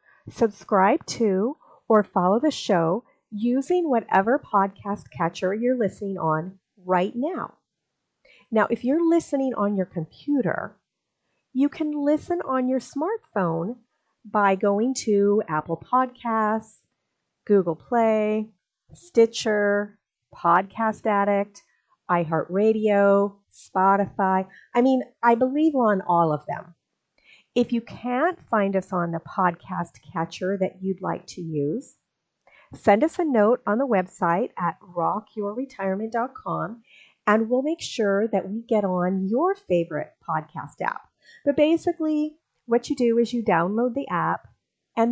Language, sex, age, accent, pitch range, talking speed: English, female, 40-59, American, 190-255 Hz, 125 wpm